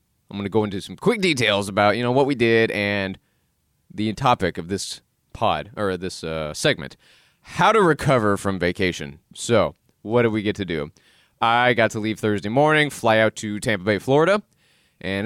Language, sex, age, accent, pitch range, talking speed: English, male, 30-49, American, 90-120 Hz, 195 wpm